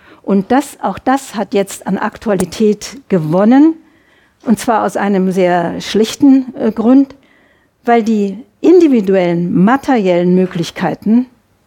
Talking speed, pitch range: 115 wpm, 200-250 Hz